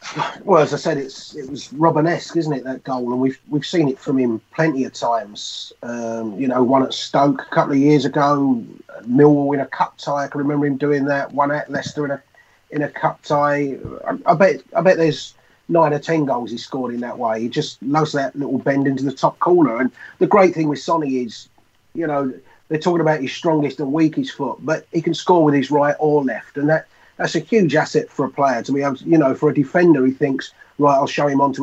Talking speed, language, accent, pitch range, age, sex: 245 wpm, English, British, 135-155 Hz, 30-49, male